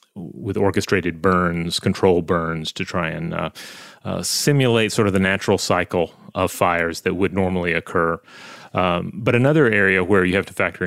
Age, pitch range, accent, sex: 30-49, 90-105 Hz, American, male